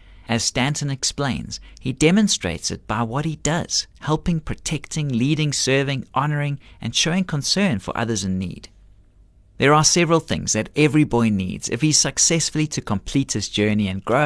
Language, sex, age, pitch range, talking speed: English, male, 30-49, 105-155 Hz, 170 wpm